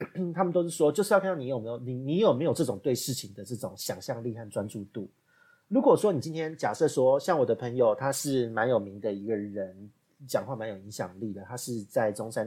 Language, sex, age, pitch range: Chinese, male, 30-49, 120-195 Hz